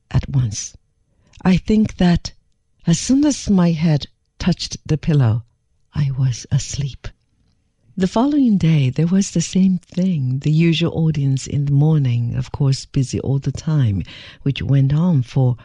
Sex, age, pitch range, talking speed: female, 60-79, 125-170 Hz, 155 wpm